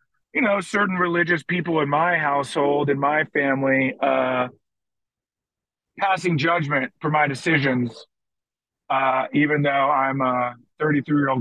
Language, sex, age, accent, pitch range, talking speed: English, male, 40-59, American, 140-175 Hz, 120 wpm